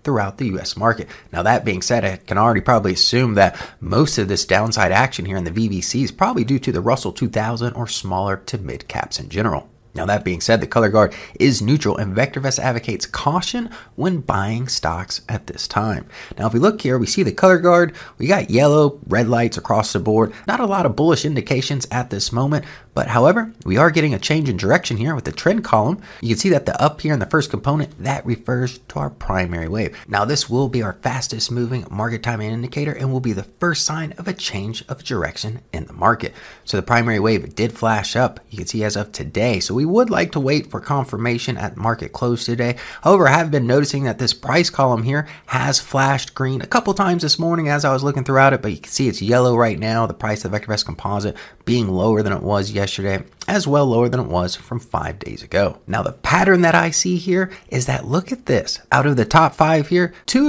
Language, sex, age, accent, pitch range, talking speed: English, male, 30-49, American, 110-150 Hz, 235 wpm